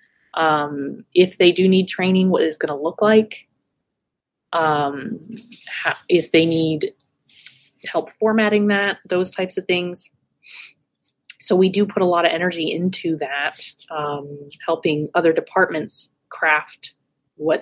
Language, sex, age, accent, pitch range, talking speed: English, female, 20-39, American, 155-200 Hz, 135 wpm